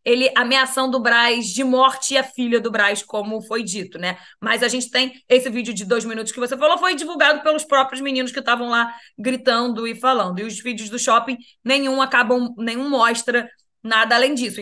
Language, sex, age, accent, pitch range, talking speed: Portuguese, female, 20-39, Brazilian, 225-275 Hz, 205 wpm